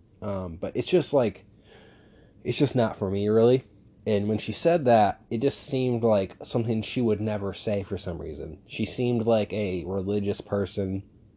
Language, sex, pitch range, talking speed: English, male, 100-115 Hz, 180 wpm